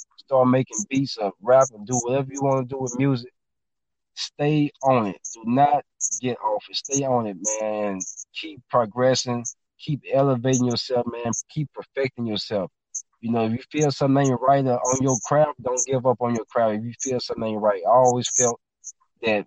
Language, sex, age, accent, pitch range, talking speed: English, male, 20-39, American, 110-135 Hz, 190 wpm